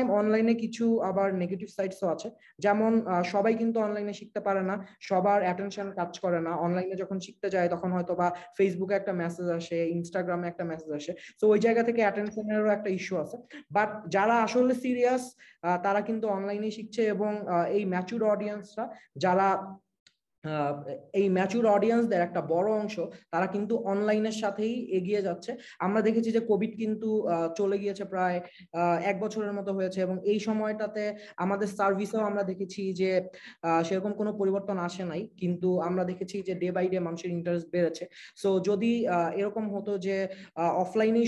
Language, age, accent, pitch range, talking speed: Bengali, 20-39, native, 185-215 Hz, 85 wpm